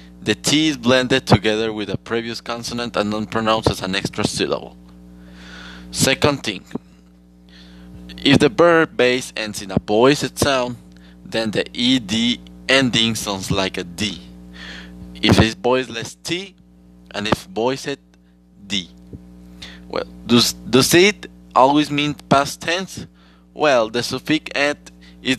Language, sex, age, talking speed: English, male, 20-39, 135 wpm